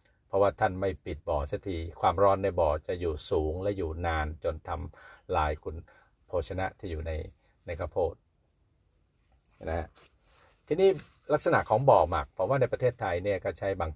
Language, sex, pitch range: Thai, male, 85-110 Hz